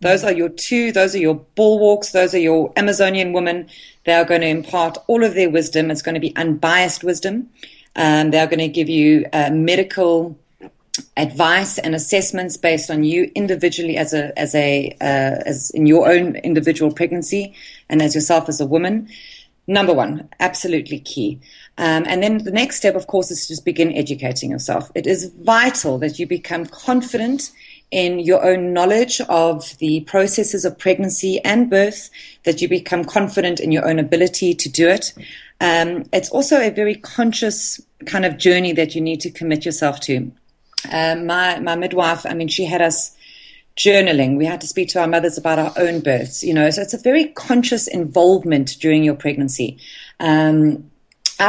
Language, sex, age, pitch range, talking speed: English, female, 30-49, 155-195 Hz, 185 wpm